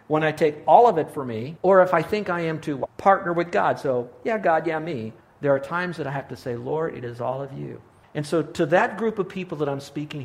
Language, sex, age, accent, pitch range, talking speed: English, male, 60-79, American, 125-165 Hz, 275 wpm